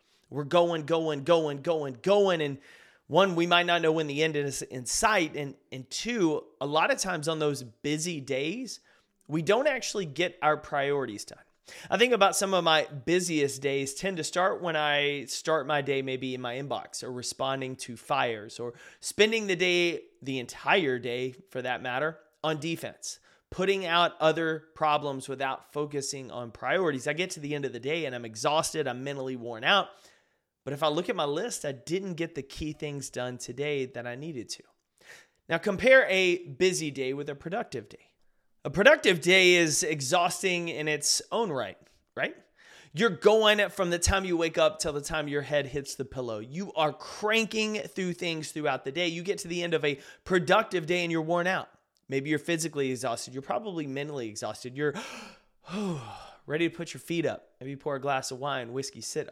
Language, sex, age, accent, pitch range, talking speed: English, male, 30-49, American, 135-175 Hz, 195 wpm